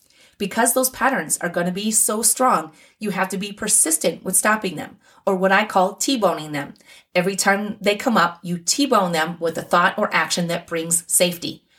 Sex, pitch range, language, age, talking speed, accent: female, 170-225 Hz, English, 30-49, 200 wpm, American